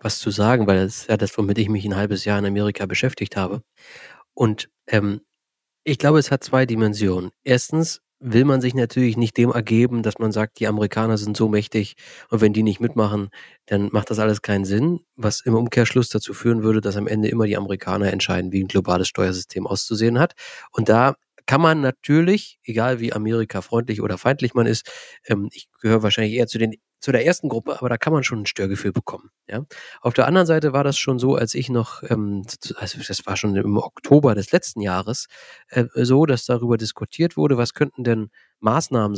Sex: male